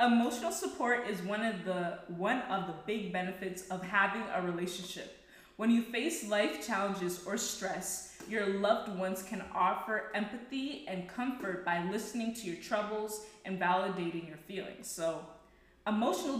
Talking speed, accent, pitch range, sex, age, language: 150 wpm, American, 185-240 Hz, female, 20-39, English